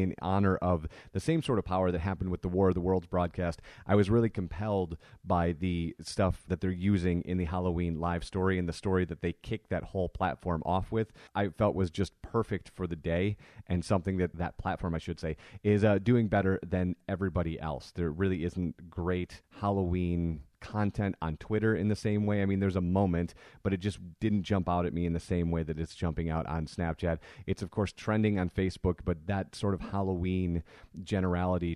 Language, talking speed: English, 215 wpm